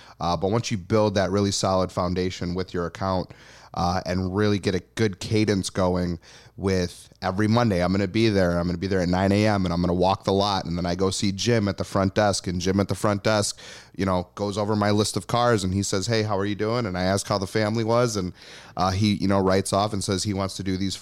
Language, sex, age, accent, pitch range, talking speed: English, male, 30-49, American, 90-105 Hz, 275 wpm